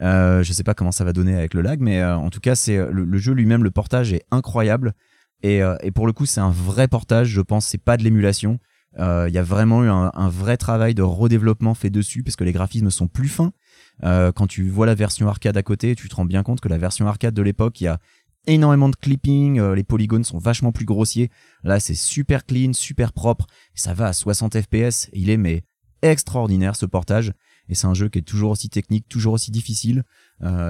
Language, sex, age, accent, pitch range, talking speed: French, male, 30-49, French, 90-115 Hz, 250 wpm